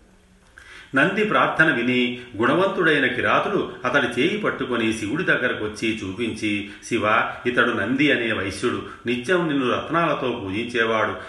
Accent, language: native, Telugu